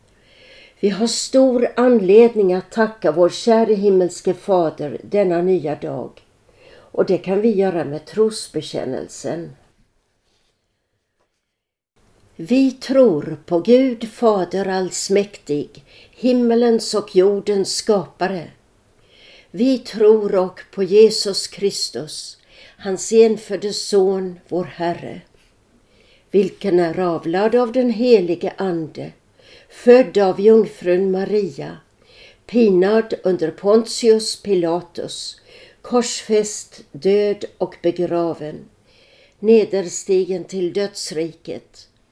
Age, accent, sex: 60-79, native, female